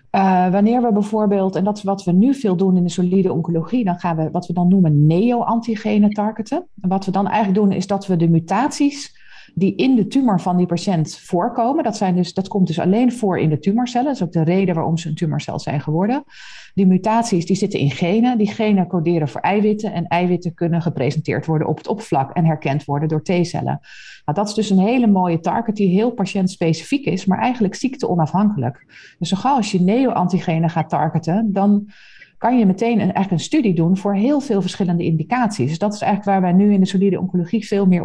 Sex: female